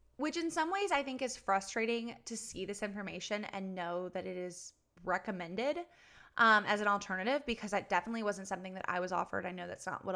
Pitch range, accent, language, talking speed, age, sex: 190-235 Hz, American, English, 215 wpm, 20-39, female